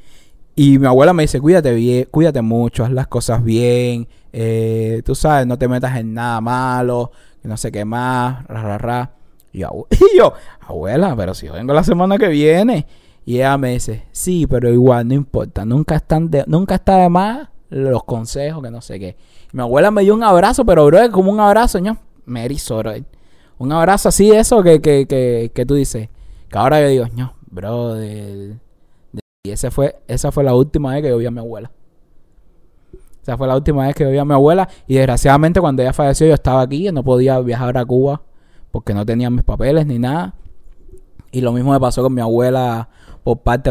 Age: 20-39